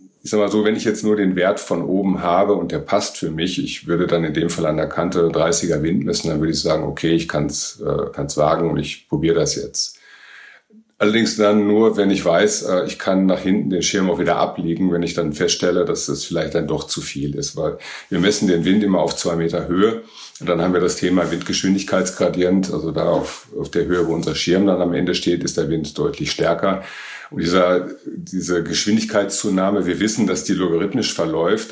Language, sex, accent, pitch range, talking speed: German, male, German, 85-100 Hz, 225 wpm